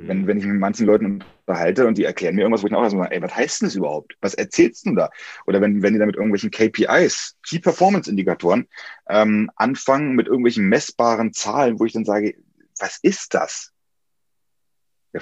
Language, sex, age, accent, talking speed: German, male, 30-49, German, 210 wpm